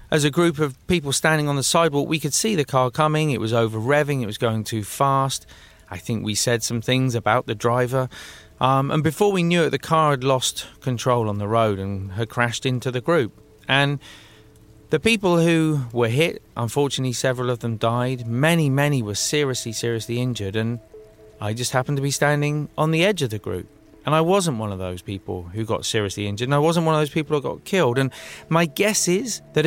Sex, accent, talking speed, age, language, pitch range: male, British, 220 wpm, 30-49, English, 115-150 Hz